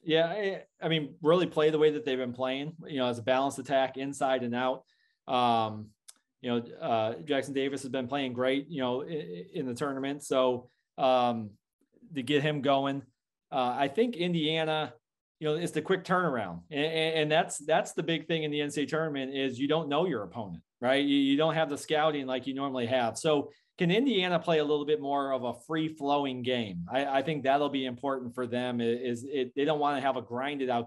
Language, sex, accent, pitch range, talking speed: English, male, American, 125-155 Hz, 215 wpm